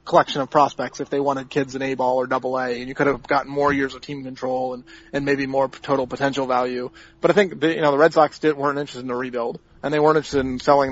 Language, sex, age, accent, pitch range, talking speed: English, male, 30-49, American, 135-155 Hz, 275 wpm